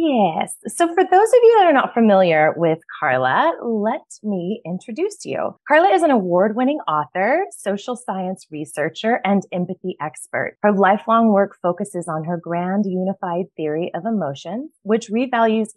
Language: English